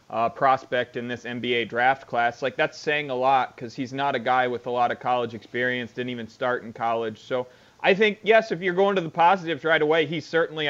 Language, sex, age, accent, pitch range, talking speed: English, male, 30-49, American, 125-155 Hz, 235 wpm